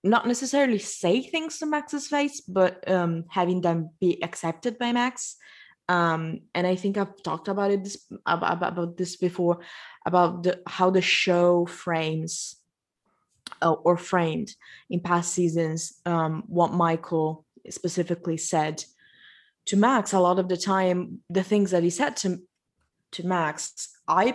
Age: 20-39